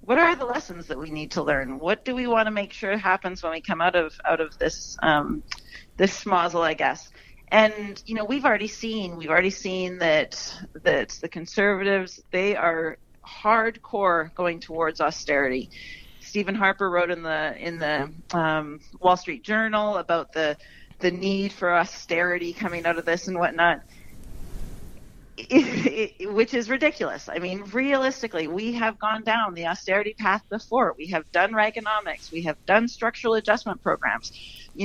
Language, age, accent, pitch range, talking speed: English, 40-59, American, 170-220 Hz, 165 wpm